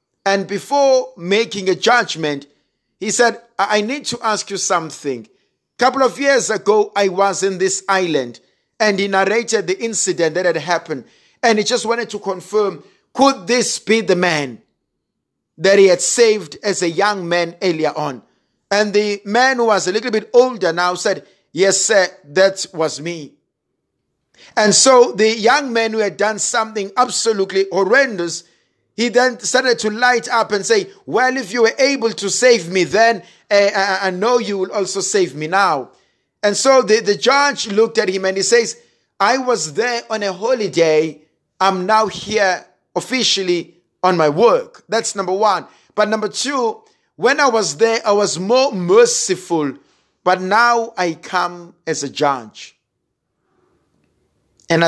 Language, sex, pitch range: English, male, 180-230 Hz